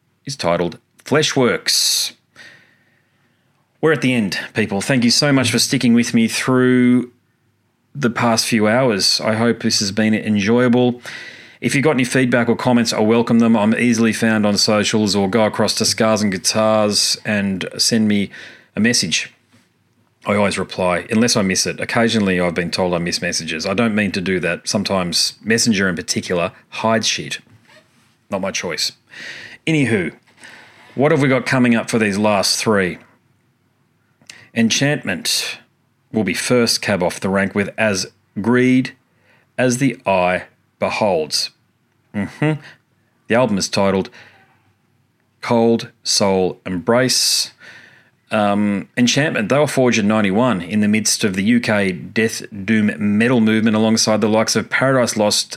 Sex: male